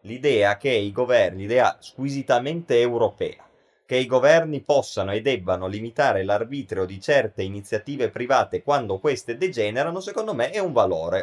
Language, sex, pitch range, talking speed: Italian, male, 105-140 Hz, 145 wpm